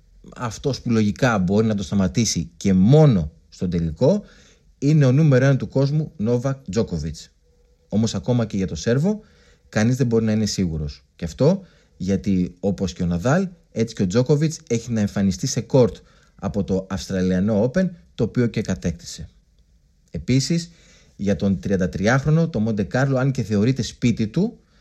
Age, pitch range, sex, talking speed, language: 30-49, 95-140 Hz, male, 160 wpm, Greek